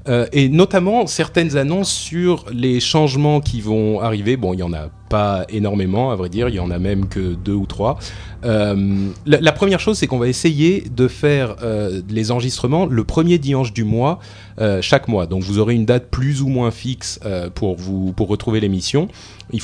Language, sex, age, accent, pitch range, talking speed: French, male, 30-49, French, 95-125 Hz, 210 wpm